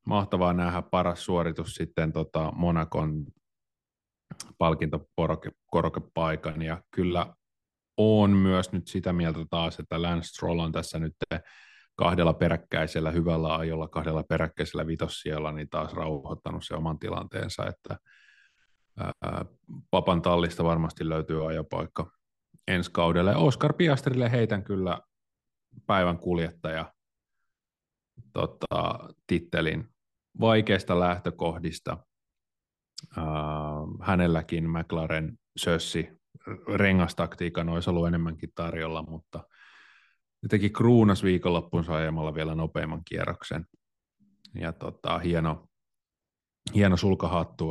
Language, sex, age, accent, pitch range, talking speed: Finnish, male, 30-49, native, 80-90 Hz, 95 wpm